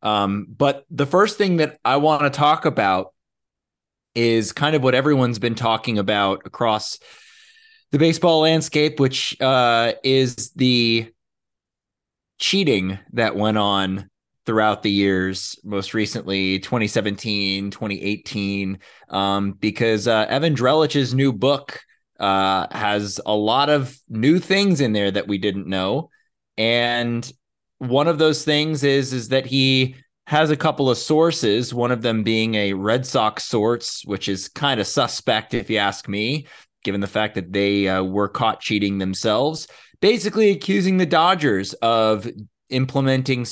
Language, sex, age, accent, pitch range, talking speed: English, male, 20-39, American, 105-140 Hz, 145 wpm